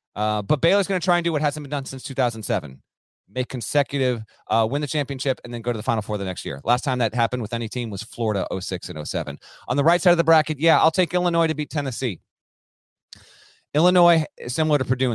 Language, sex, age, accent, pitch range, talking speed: English, male, 30-49, American, 110-145 Hz, 240 wpm